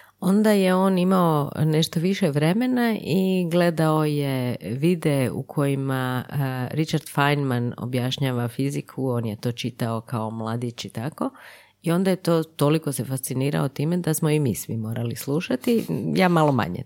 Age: 30-49